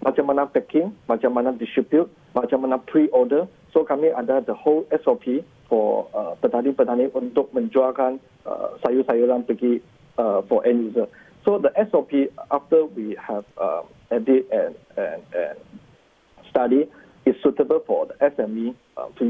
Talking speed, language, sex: 135 wpm, Malay, male